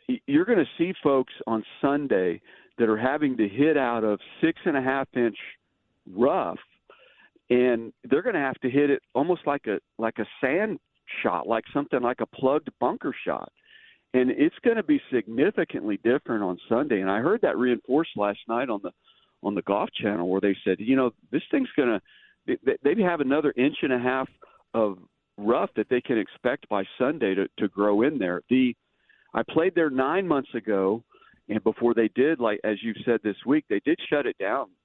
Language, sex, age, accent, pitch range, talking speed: English, male, 50-69, American, 110-170 Hz, 200 wpm